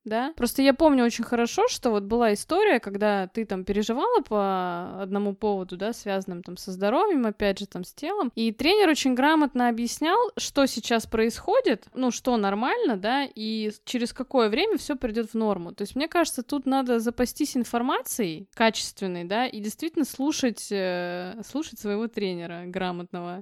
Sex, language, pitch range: female, Russian, 200-265 Hz